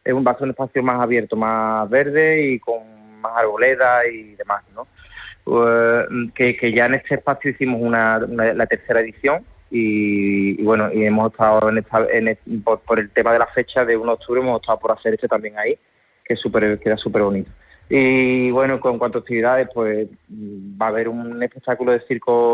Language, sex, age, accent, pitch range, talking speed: Spanish, male, 20-39, Spanish, 110-125 Hz, 195 wpm